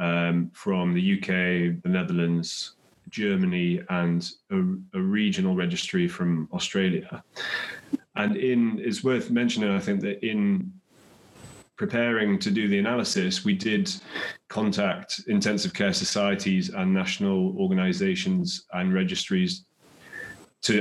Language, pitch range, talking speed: English, 175-200 Hz, 115 wpm